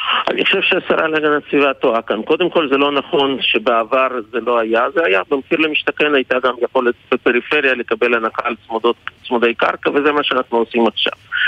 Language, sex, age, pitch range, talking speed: Hebrew, male, 50-69, 120-160 Hz, 185 wpm